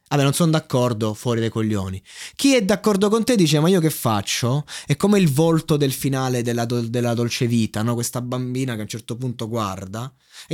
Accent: native